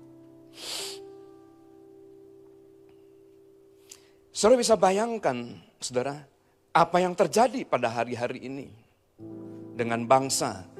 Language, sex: Indonesian, male